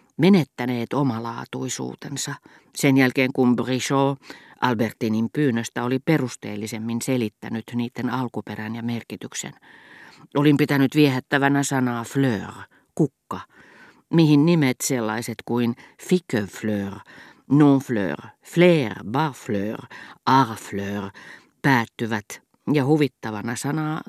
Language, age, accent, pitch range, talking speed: Finnish, 50-69, native, 115-145 Hz, 85 wpm